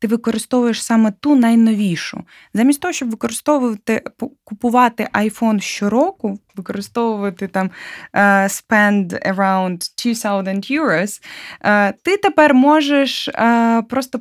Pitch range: 195-255 Hz